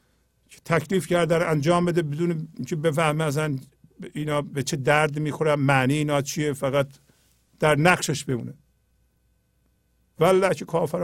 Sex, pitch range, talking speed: male, 140-180 Hz, 135 wpm